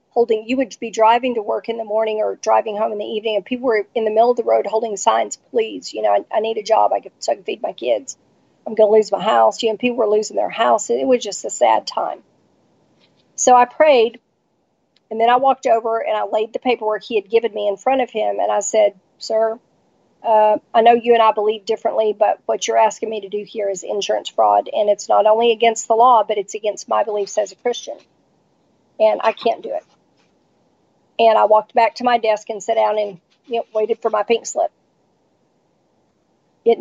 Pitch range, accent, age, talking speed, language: 215-240 Hz, American, 40-59, 230 wpm, English